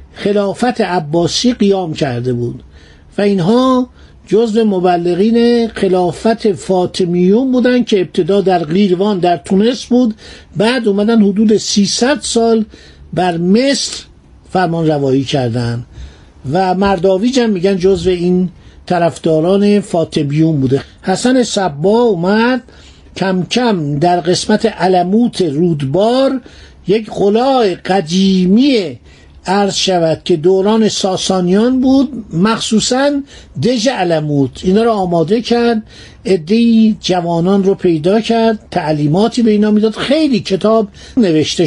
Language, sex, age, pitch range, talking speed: Persian, male, 50-69, 175-225 Hz, 110 wpm